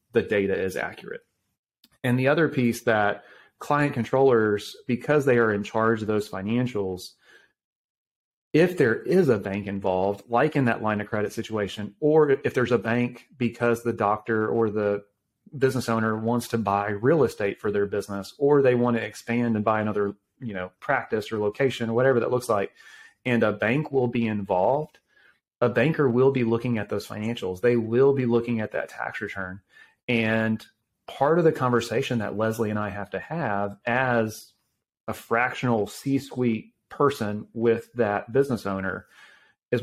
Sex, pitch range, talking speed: male, 105-125 Hz, 170 wpm